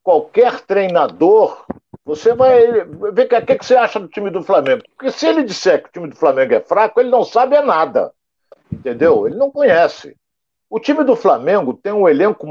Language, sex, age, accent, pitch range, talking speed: Portuguese, male, 60-79, Brazilian, 190-290 Hz, 185 wpm